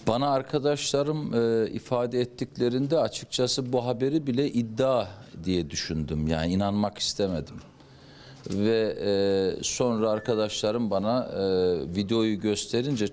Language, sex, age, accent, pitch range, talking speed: Turkish, male, 50-69, native, 100-135 Hz, 105 wpm